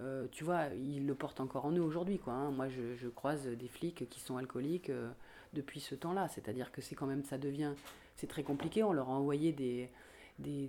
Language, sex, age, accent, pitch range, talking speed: French, female, 30-49, French, 135-165 Hz, 230 wpm